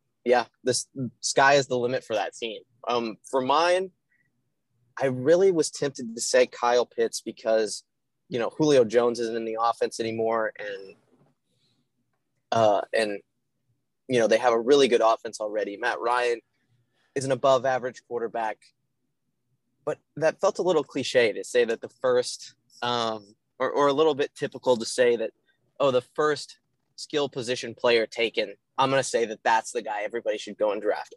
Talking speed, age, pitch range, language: 175 wpm, 20-39, 120-150 Hz, English